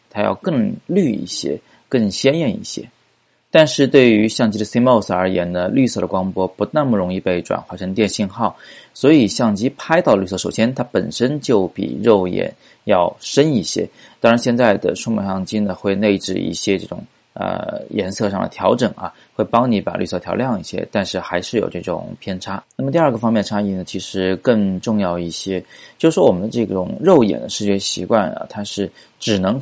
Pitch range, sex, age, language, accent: 95-115 Hz, male, 20-39, Chinese, native